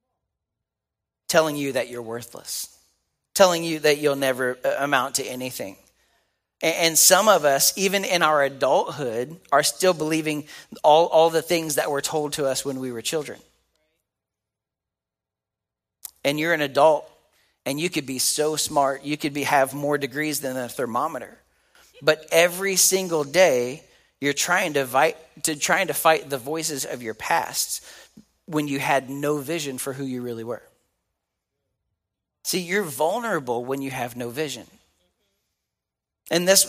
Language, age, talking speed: English, 40-59, 150 wpm